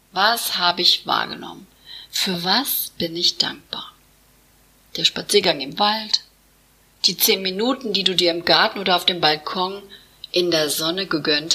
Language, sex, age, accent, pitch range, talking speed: German, female, 40-59, German, 170-220 Hz, 150 wpm